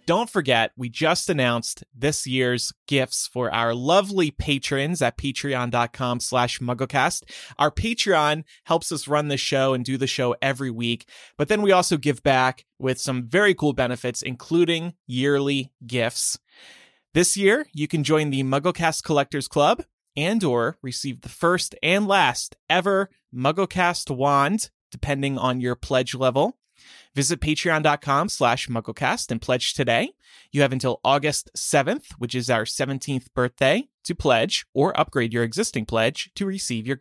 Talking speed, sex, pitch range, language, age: 150 wpm, male, 125-165 Hz, English, 30-49